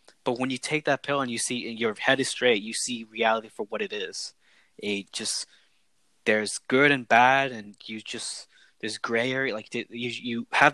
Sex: male